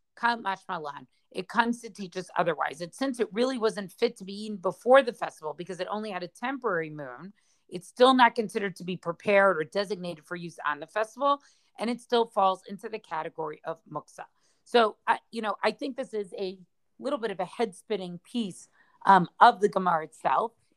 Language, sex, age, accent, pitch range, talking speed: English, female, 40-59, American, 185-235 Hz, 200 wpm